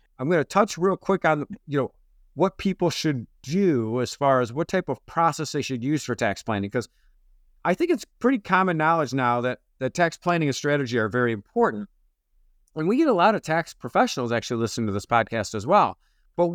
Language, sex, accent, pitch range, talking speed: English, male, American, 135-195 Hz, 215 wpm